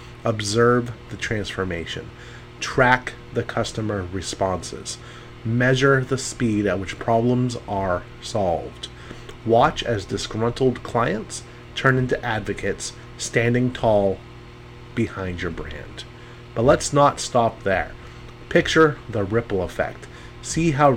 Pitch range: 110-120 Hz